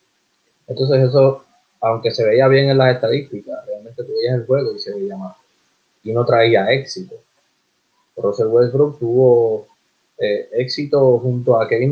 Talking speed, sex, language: 145 wpm, male, Spanish